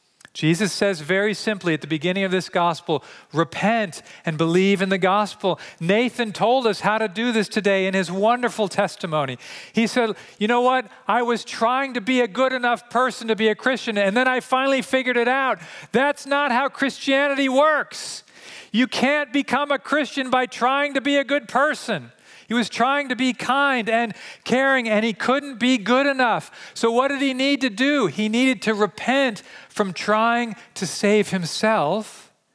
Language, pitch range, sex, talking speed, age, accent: English, 165-250 Hz, male, 185 wpm, 40-59, American